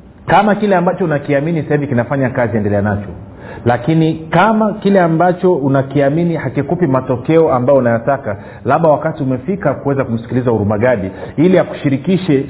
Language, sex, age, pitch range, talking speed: Swahili, male, 40-59, 120-160 Hz, 130 wpm